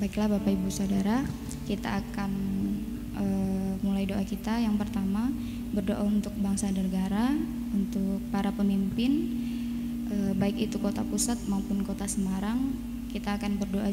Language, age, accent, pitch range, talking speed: Indonesian, 20-39, native, 200-235 Hz, 130 wpm